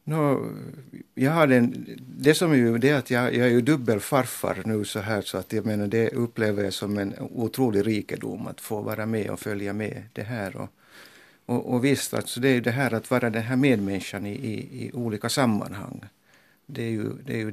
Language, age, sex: Finnish, 60-79, male